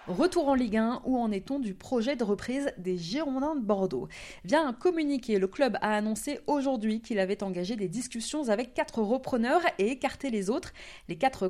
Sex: female